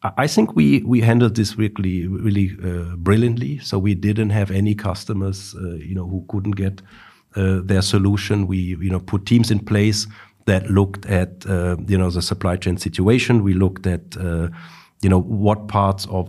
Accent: German